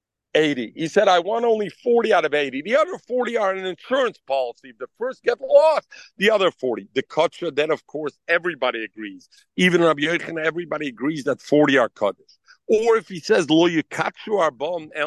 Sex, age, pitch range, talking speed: male, 50-69, 150-235 Hz, 185 wpm